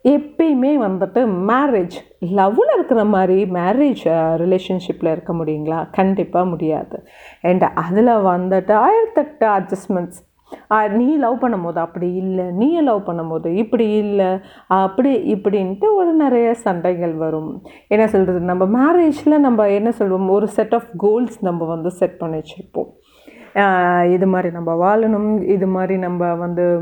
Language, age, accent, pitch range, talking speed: Tamil, 30-49, native, 180-265 Hz, 125 wpm